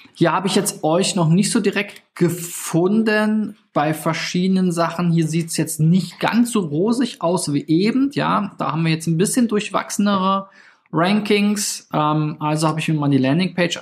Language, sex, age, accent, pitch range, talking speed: German, male, 20-39, German, 130-165 Hz, 180 wpm